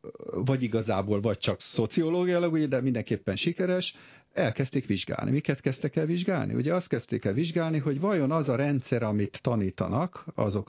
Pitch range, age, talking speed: 100-140 Hz, 50-69, 150 wpm